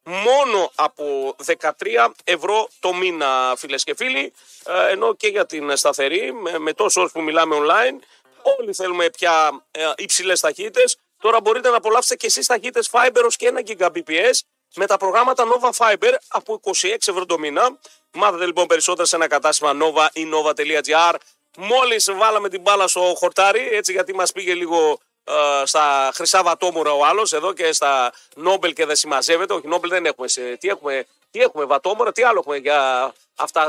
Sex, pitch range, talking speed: male, 155-240 Hz, 165 wpm